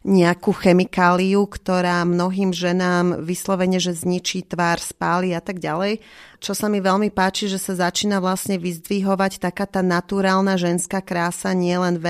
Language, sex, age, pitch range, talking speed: Slovak, female, 30-49, 175-190 Hz, 150 wpm